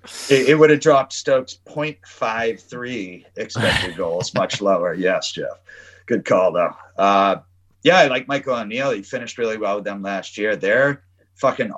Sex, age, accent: male, 30-49, American